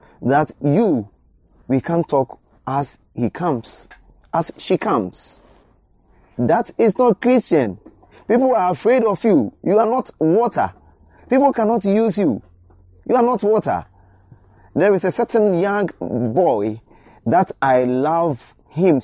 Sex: male